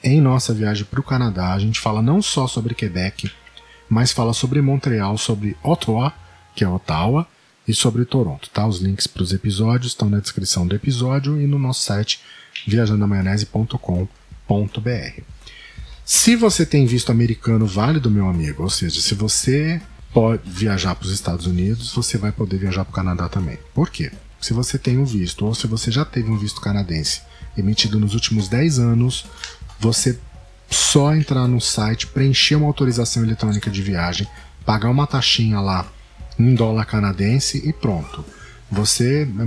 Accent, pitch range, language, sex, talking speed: Brazilian, 100-125 Hz, Portuguese, male, 165 wpm